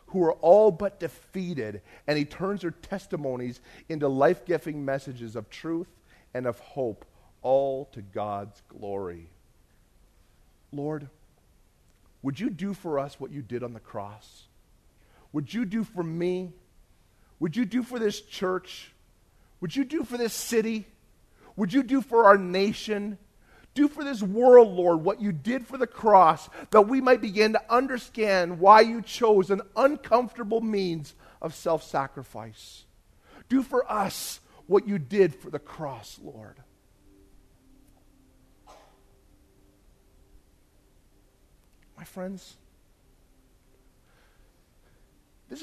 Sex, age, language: male, 40-59, English